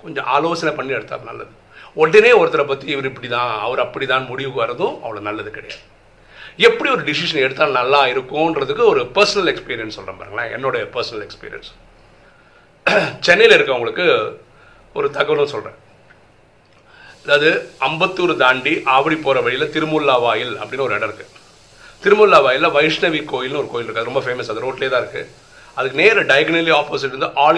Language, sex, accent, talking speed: Tamil, male, native, 150 wpm